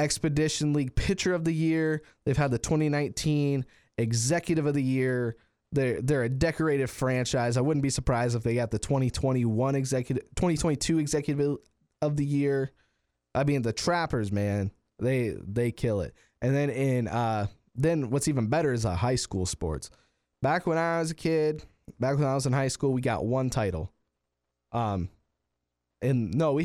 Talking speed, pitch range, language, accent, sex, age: 175 wpm, 115-145 Hz, English, American, male, 20-39